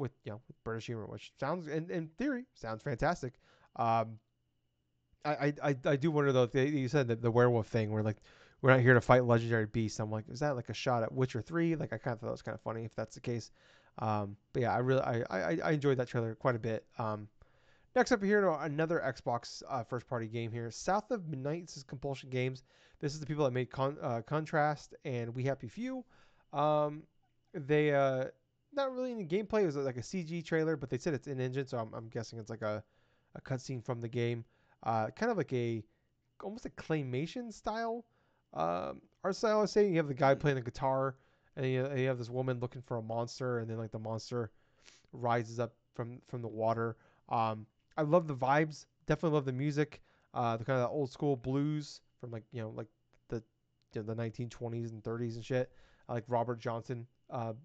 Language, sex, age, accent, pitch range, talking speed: English, male, 30-49, American, 115-150 Hz, 225 wpm